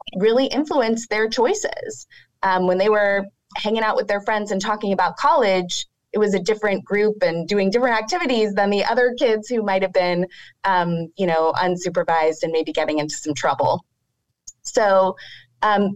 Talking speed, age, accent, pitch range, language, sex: 175 wpm, 20-39, American, 170-225 Hz, English, female